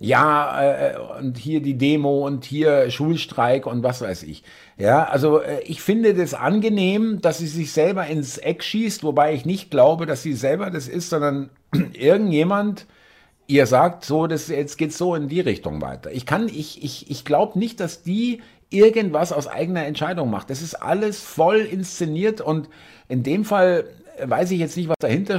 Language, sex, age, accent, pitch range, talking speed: German, male, 60-79, German, 130-175 Hz, 180 wpm